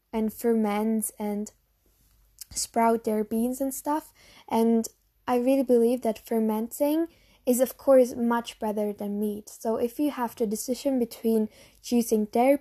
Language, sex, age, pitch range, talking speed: English, female, 10-29, 220-255 Hz, 145 wpm